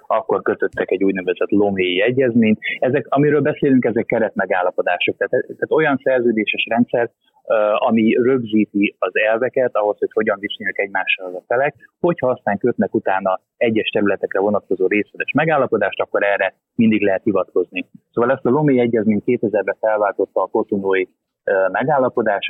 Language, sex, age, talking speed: Hungarian, male, 30-49, 140 wpm